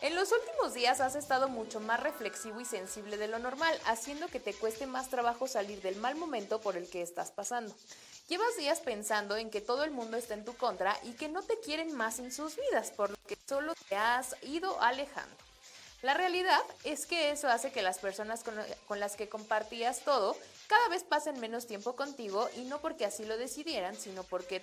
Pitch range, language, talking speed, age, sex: 205-295 Hz, Spanish, 210 wpm, 30-49, female